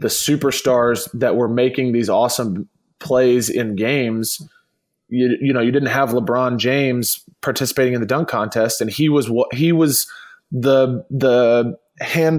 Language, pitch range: English, 115-145 Hz